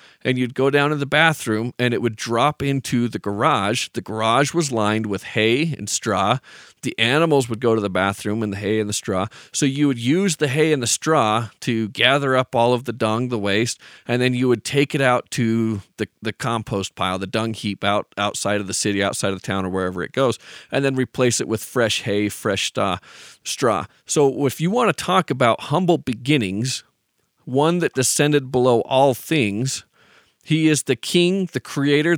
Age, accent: 40-59, American